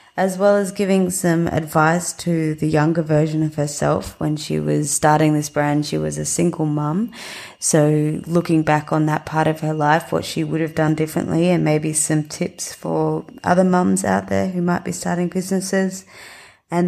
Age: 20-39